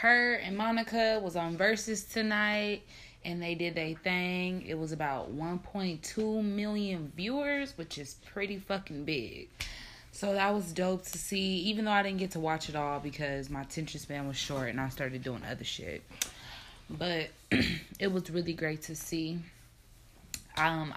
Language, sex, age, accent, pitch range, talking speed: English, female, 20-39, American, 145-175 Hz, 165 wpm